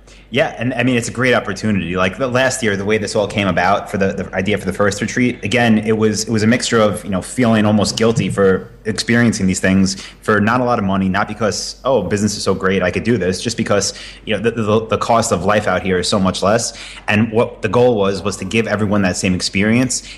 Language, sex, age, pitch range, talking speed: English, male, 30-49, 95-110 Hz, 260 wpm